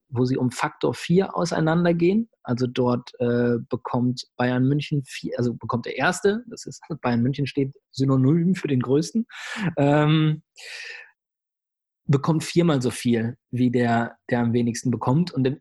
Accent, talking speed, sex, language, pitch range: German, 150 wpm, male, German, 125-160 Hz